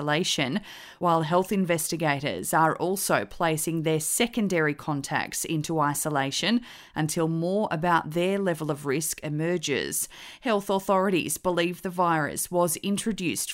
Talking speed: 120 wpm